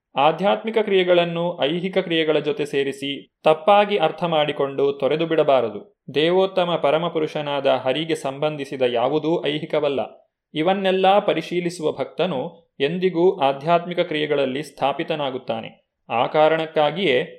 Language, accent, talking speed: Kannada, native, 90 wpm